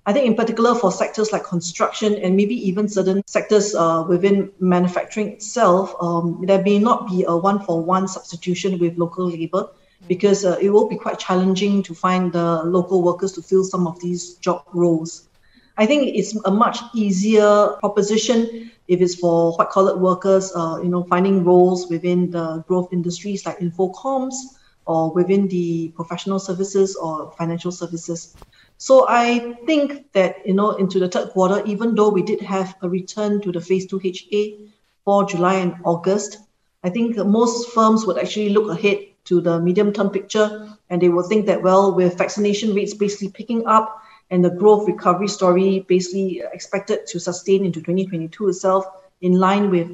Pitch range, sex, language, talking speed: 180-205 Hz, female, English, 175 wpm